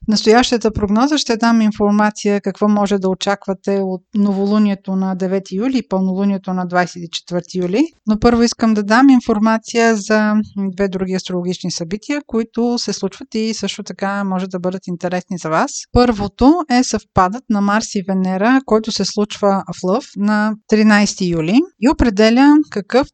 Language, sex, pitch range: Bulgarian, female, 195-240 Hz